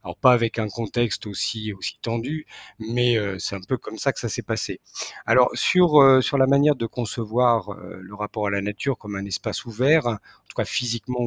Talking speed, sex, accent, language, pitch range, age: 220 wpm, male, French, French, 105-130 Hz, 50-69